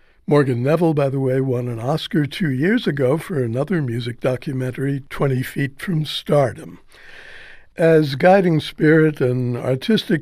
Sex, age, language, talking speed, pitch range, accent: male, 60-79, English, 140 wpm, 135-175 Hz, American